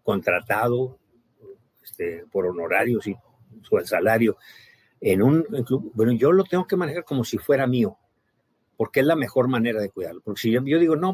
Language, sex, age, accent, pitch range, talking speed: Spanish, male, 50-69, Mexican, 115-150 Hz, 190 wpm